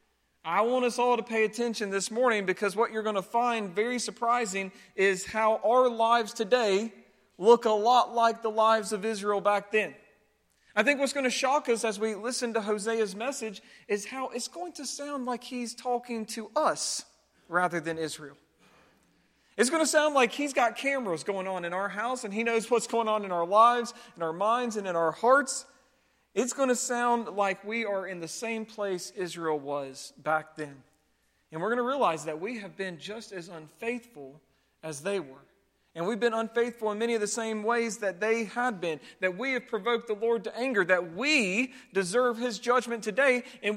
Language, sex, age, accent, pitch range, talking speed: English, male, 40-59, American, 195-250 Hz, 200 wpm